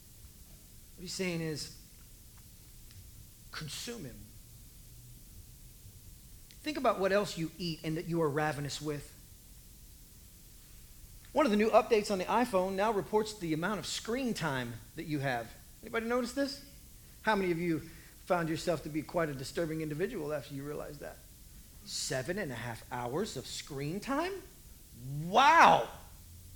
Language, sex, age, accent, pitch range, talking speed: English, male, 40-59, American, 125-210 Hz, 145 wpm